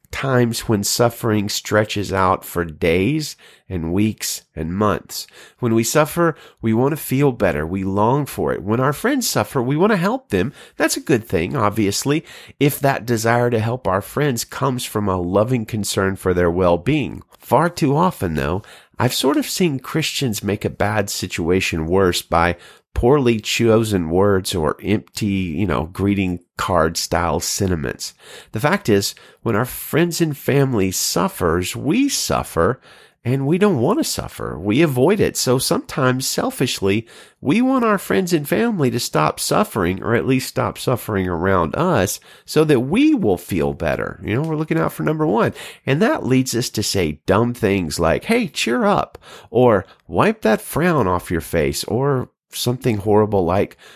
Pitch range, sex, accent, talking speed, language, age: 95-140 Hz, male, American, 170 wpm, English, 40-59